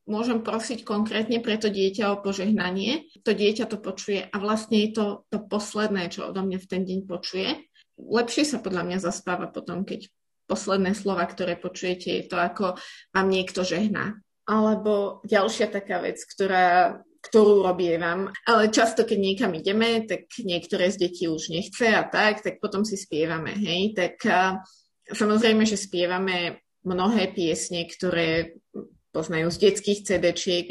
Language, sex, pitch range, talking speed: Slovak, female, 185-230 Hz, 155 wpm